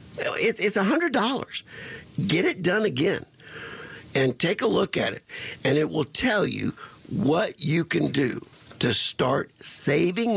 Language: English